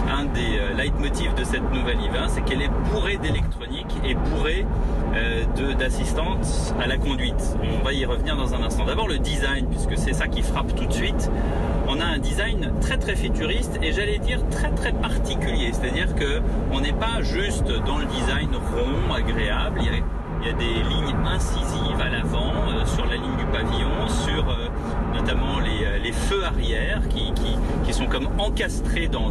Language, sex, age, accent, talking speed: French, male, 30-49, French, 185 wpm